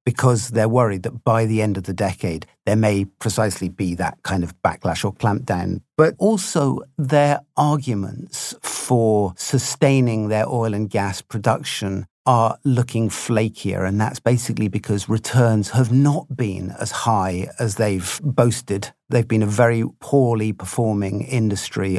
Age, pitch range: 50-69, 105-135 Hz